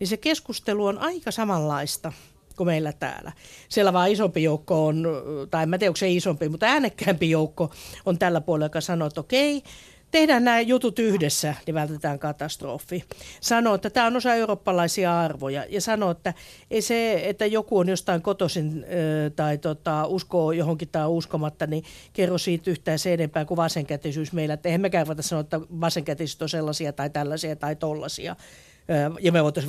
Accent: native